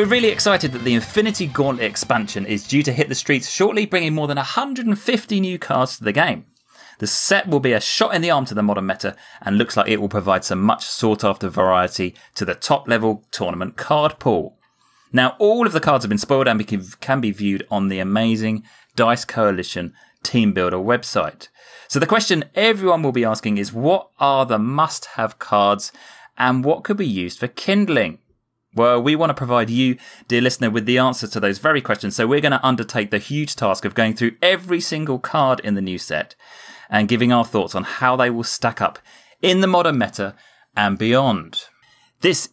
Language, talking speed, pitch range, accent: English, 205 wpm, 105-145 Hz, British